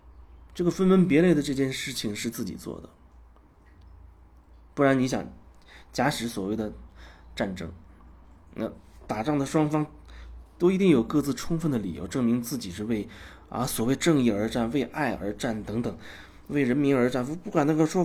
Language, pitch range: Chinese, 75-125 Hz